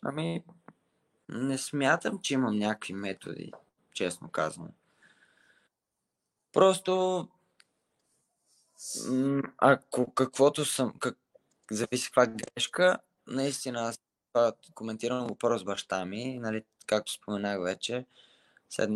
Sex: male